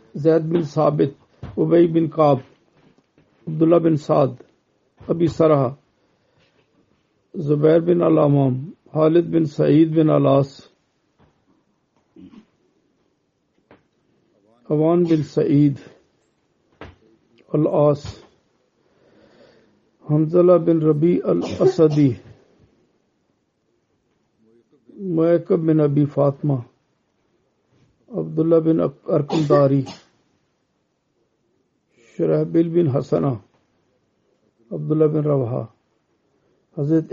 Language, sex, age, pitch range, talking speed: Turkish, male, 50-69, 145-165 Hz, 70 wpm